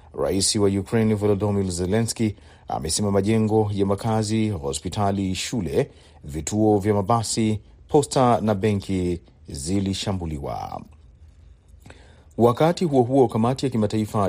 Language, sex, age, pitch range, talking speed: Swahili, male, 40-59, 95-115 Hz, 105 wpm